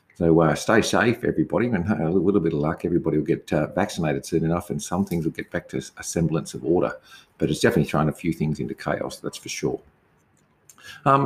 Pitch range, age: 75-95 Hz, 50-69